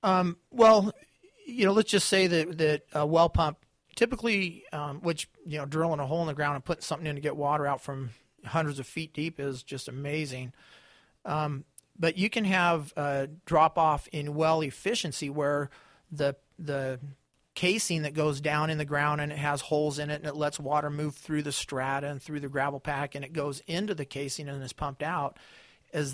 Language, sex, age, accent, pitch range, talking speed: English, male, 40-59, American, 140-160 Hz, 205 wpm